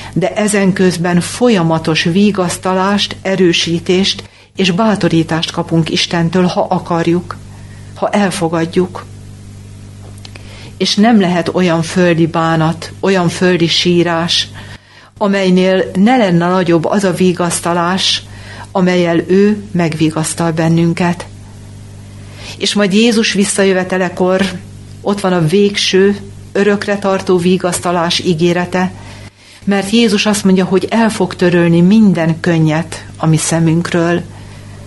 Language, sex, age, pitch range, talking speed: Hungarian, female, 60-79, 155-190 Hz, 100 wpm